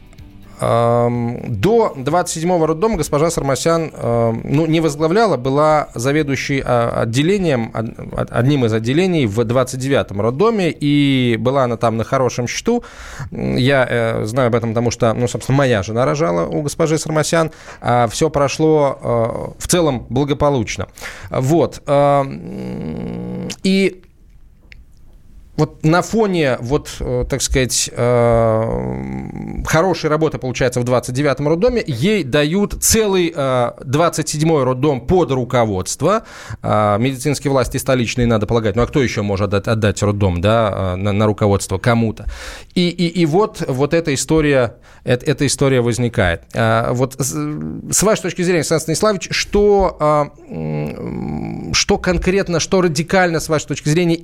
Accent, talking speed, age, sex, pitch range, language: native, 115 wpm, 20-39, male, 115-160 Hz, Russian